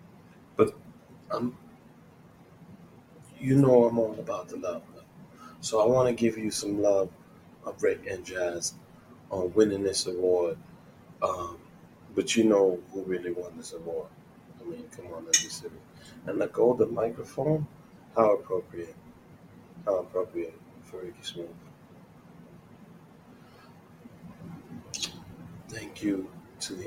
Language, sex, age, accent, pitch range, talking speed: English, male, 30-49, American, 95-115 Hz, 125 wpm